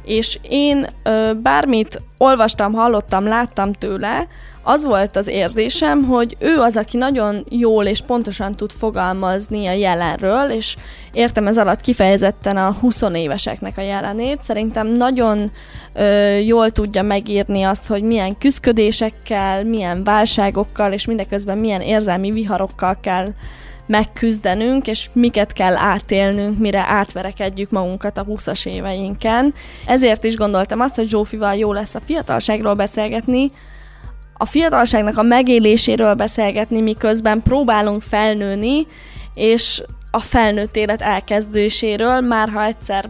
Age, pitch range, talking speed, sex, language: 10-29, 200-225 Hz, 120 wpm, female, Hungarian